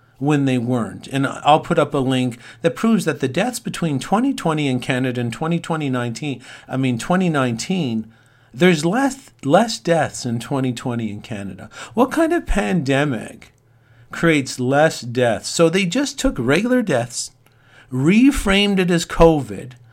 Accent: American